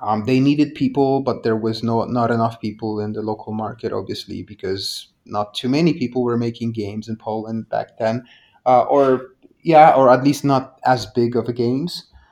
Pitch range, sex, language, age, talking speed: 110-135 Hz, male, Persian, 30-49, 190 wpm